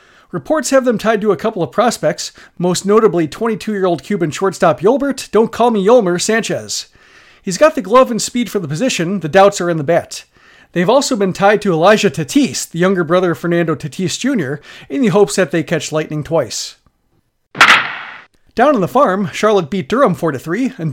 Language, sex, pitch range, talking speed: English, male, 170-225 Hz, 190 wpm